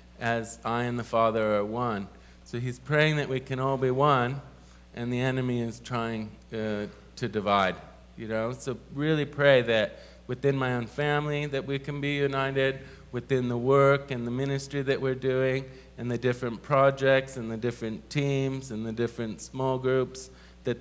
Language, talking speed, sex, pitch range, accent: English, 180 wpm, male, 100-130 Hz, American